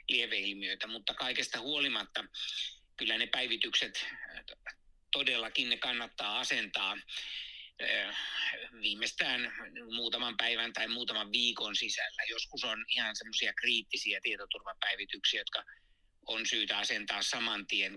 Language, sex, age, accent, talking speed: Finnish, male, 60-79, native, 95 wpm